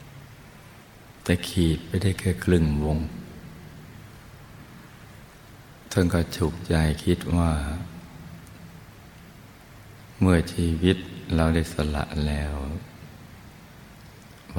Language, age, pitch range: Thai, 60-79, 75-100 Hz